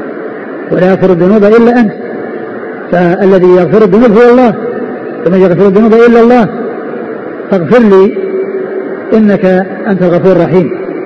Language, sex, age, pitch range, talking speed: Arabic, male, 50-69, 185-225 Hz, 115 wpm